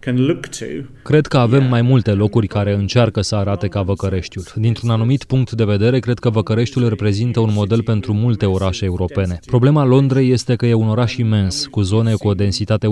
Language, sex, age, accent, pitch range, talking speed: Romanian, male, 30-49, native, 105-125 Hz, 185 wpm